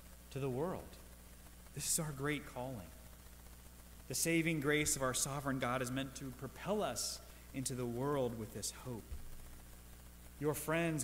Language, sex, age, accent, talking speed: English, male, 30-49, American, 150 wpm